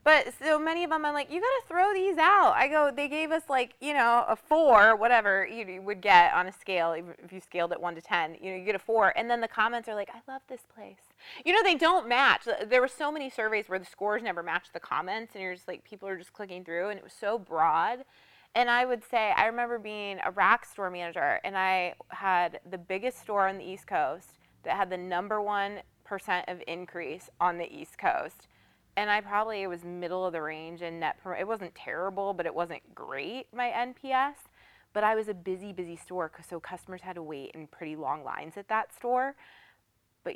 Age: 20-39